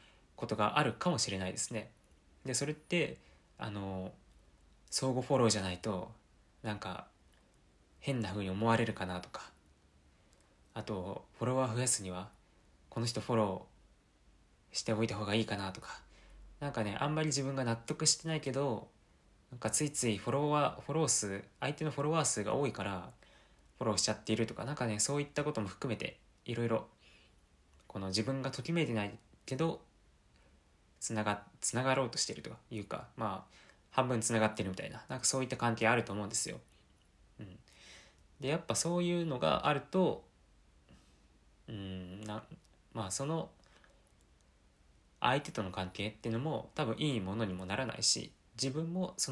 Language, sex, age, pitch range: Japanese, male, 20-39, 95-135 Hz